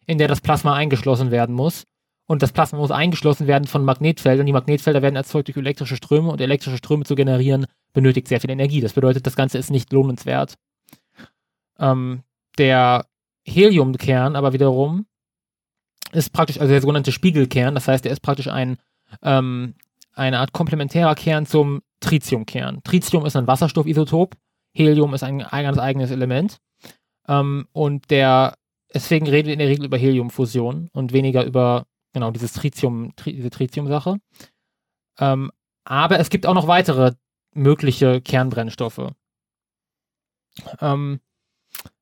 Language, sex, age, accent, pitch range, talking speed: German, male, 20-39, German, 130-150 Hz, 140 wpm